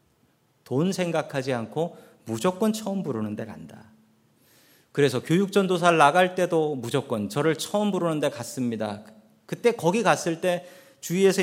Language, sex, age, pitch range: Korean, male, 40-59, 135-195 Hz